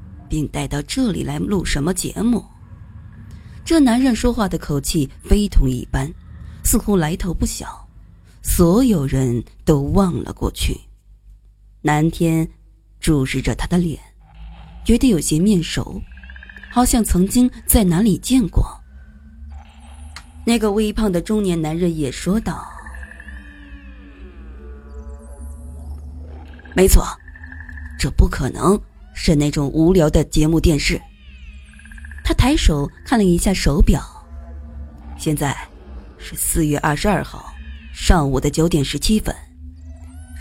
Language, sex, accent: Chinese, female, native